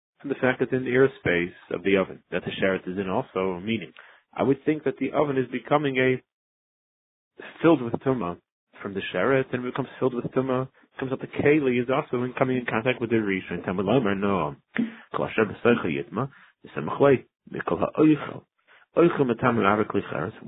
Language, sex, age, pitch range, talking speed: English, male, 30-49, 110-135 Hz, 155 wpm